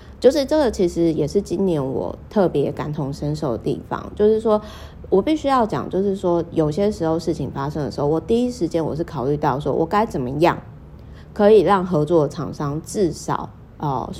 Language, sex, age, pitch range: Chinese, female, 30-49, 145-195 Hz